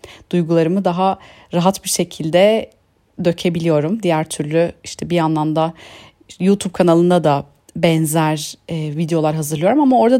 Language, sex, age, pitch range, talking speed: Turkish, female, 40-59, 165-235 Hz, 125 wpm